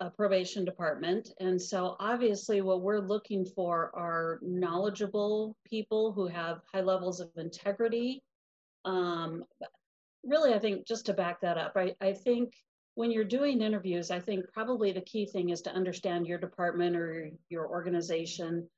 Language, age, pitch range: English, 40-59, 170-200 Hz